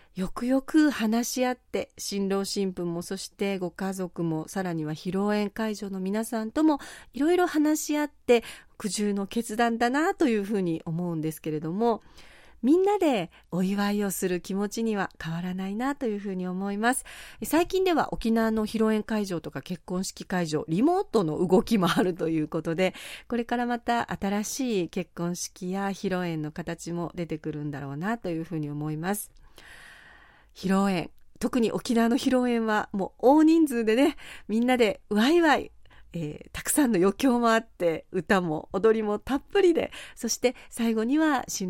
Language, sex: Japanese, female